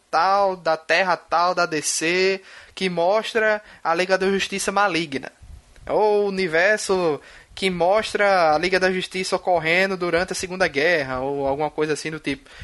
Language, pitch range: Portuguese, 145-195 Hz